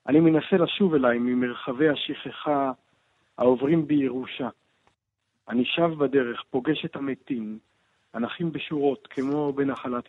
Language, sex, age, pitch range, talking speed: Hebrew, male, 50-69, 115-150 Hz, 105 wpm